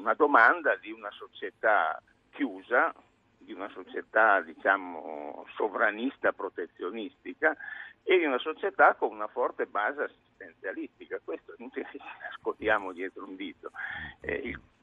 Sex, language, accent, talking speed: male, Italian, native, 125 wpm